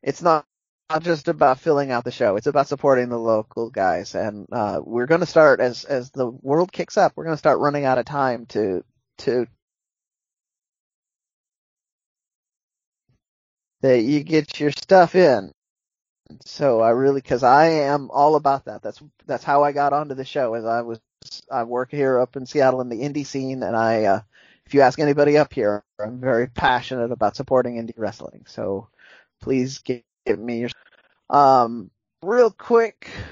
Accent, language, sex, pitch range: American, English, male, 125-165 Hz